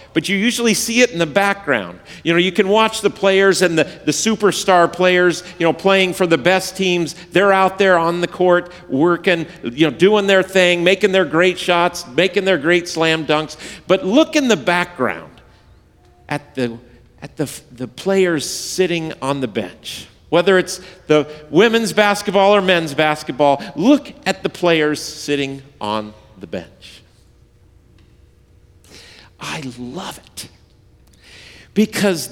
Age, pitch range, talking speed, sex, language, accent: 50-69, 160-230 Hz, 150 wpm, male, English, American